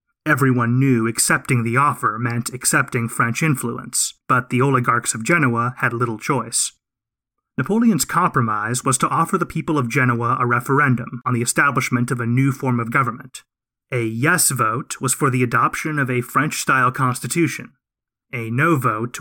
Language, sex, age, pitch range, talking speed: English, male, 30-49, 120-140 Hz, 160 wpm